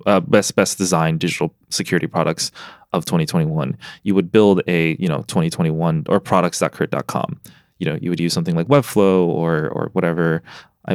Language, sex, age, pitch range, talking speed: English, male, 20-39, 85-115 Hz, 165 wpm